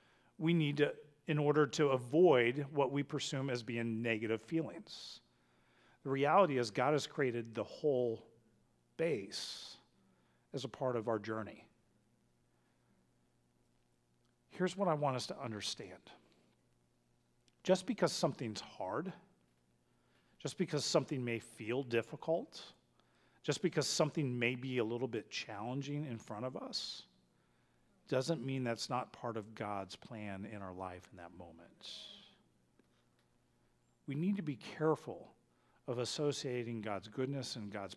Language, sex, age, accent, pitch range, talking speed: English, male, 40-59, American, 100-145 Hz, 135 wpm